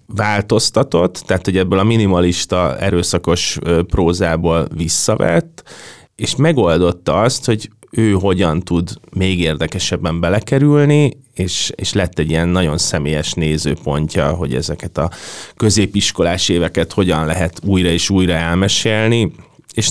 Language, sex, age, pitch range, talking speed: Hungarian, male, 30-49, 85-100 Hz, 120 wpm